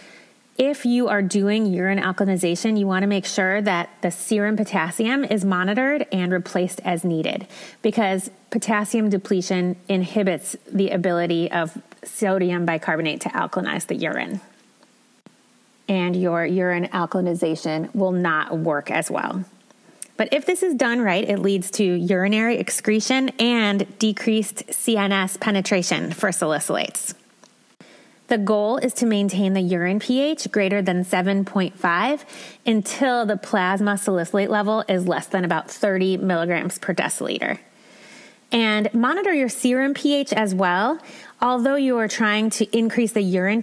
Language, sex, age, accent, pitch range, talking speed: English, female, 30-49, American, 185-230 Hz, 135 wpm